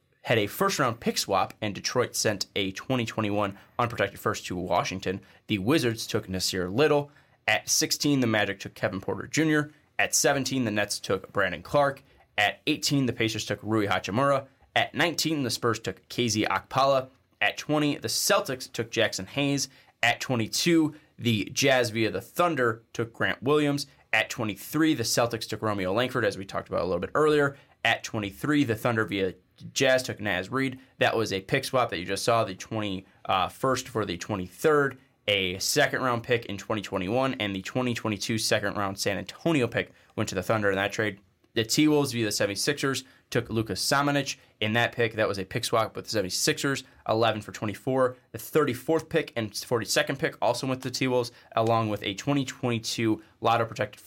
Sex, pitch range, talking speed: male, 105-135 Hz, 180 wpm